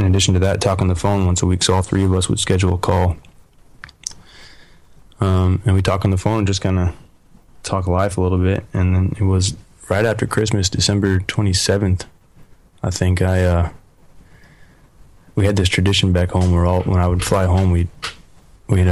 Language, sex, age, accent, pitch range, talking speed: English, male, 20-39, American, 90-100 Hz, 205 wpm